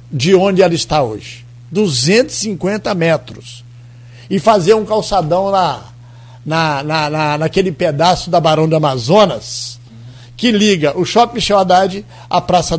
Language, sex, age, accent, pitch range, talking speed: Portuguese, male, 60-79, Brazilian, 140-210 Hz, 115 wpm